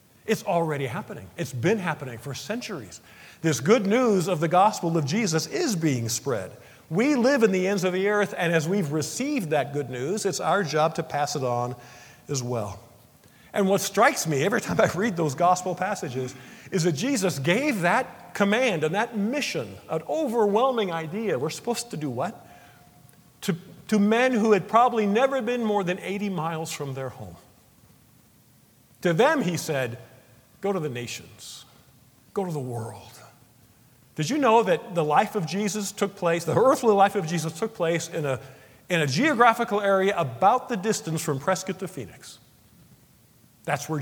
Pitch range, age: 135-205 Hz, 50-69